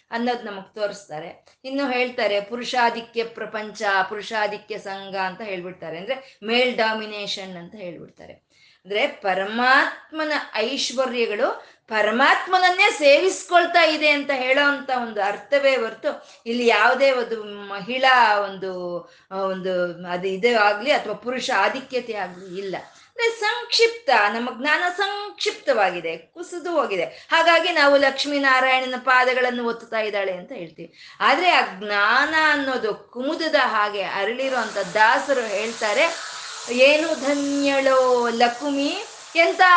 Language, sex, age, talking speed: Kannada, female, 20-39, 100 wpm